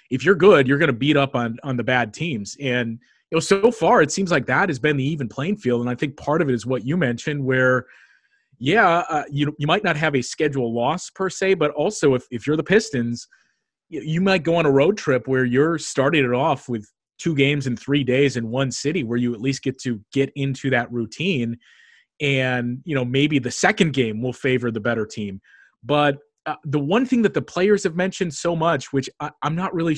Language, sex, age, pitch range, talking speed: English, male, 30-49, 125-155 Hz, 235 wpm